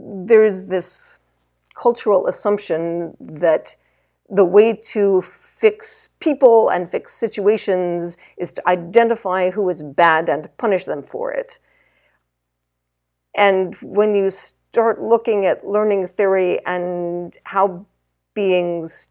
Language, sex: English, female